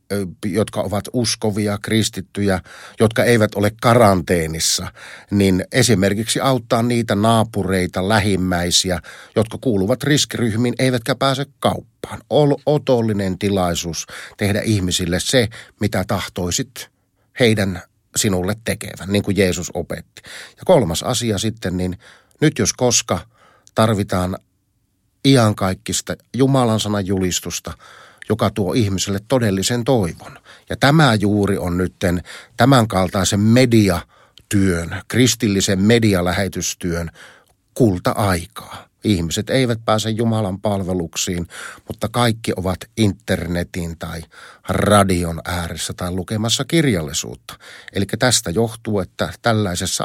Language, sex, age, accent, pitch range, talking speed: Finnish, male, 50-69, native, 95-115 Hz, 100 wpm